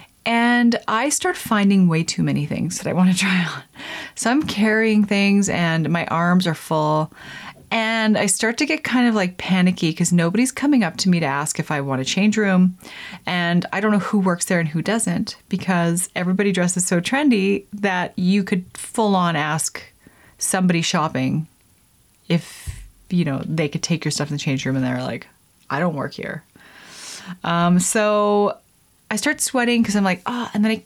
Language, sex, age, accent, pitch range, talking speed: English, female, 30-49, American, 165-215 Hz, 195 wpm